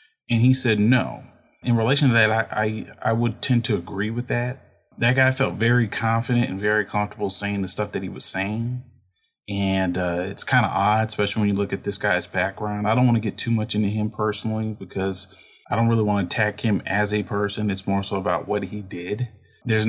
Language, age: English, 30-49